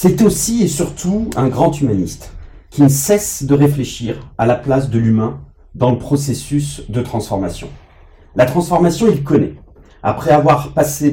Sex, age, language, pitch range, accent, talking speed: male, 40-59, French, 110-145 Hz, French, 155 wpm